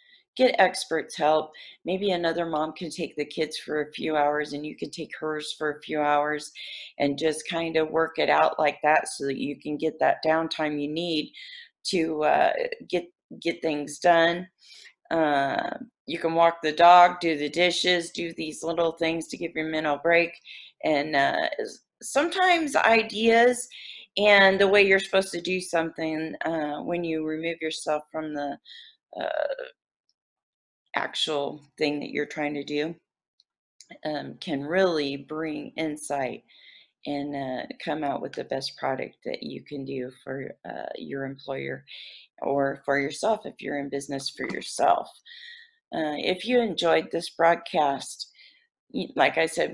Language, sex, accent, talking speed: English, female, American, 160 wpm